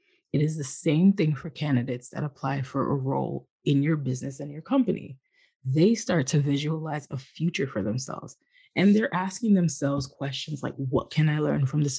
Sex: female